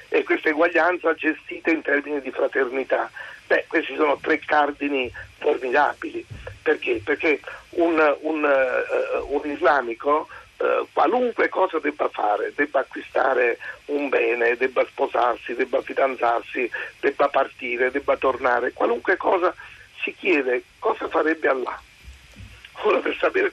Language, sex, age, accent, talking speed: Italian, male, 50-69, native, 115 wpm